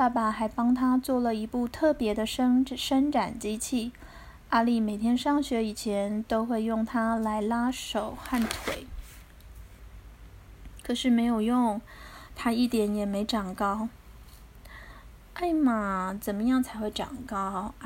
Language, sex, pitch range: Chinese, female, 210-250 Hz